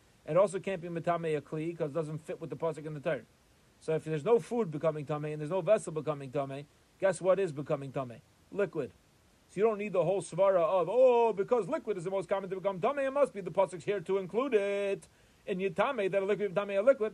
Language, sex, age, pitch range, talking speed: English, male, 40-59, 165-205 Hz, 250 wpm